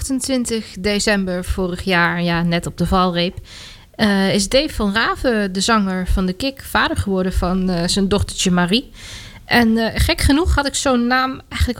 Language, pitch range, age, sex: Dutch, 180-225 Hz, 20-39, female